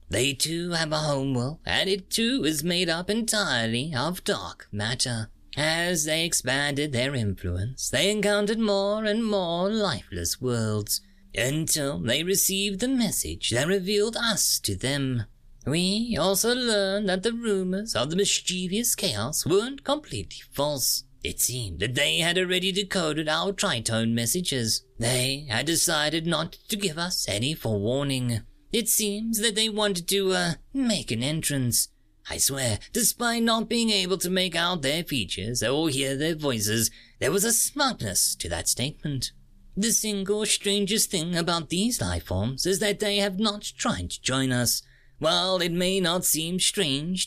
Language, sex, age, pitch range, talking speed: English, male, 30-49, 125-200 Hz, 155 wpm